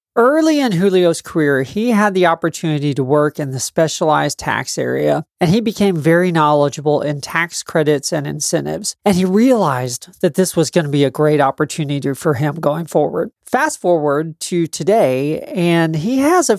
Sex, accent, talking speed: male, American, 175 wpm